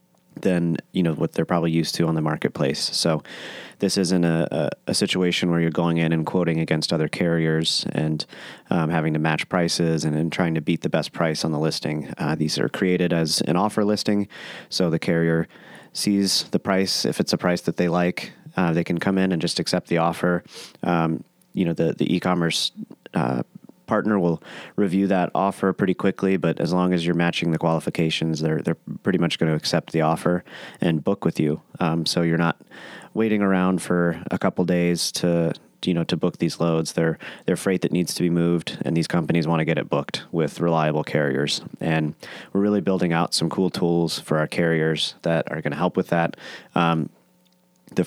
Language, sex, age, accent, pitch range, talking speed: English, male, 30-49, American, 80-90 Hz, 205 wpm